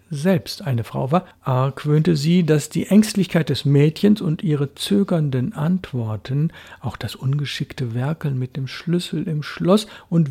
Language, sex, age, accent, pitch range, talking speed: German, male, 60-79, German, 120-170 Hz, 145 wpm